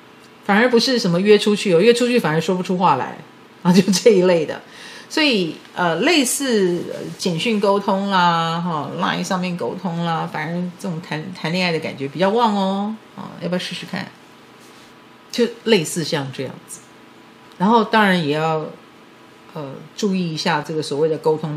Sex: female